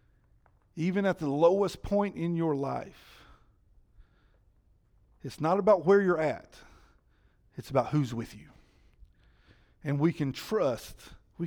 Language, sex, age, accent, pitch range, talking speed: English, male, 50-69, American, 115-165 Hz, 125 wpm